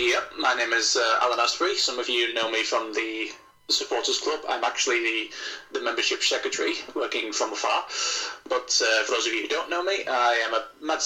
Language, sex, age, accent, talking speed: English, male, 20-39, British, 210 wpm